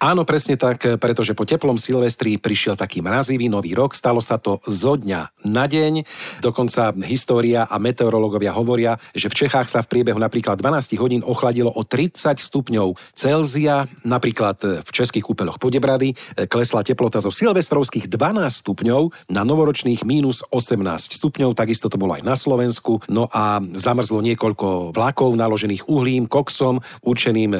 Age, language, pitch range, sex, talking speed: 40-59, Slovak, 105-130 Hz, male, 150 wpm